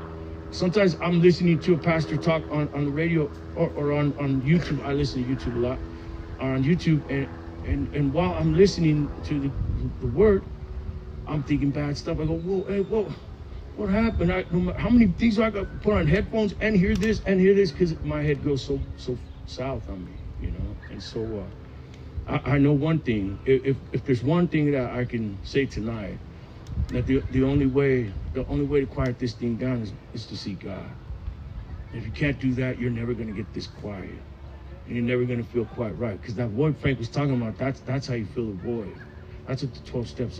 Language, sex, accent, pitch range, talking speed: English, male, American, 105-145 Hz, 225 wpm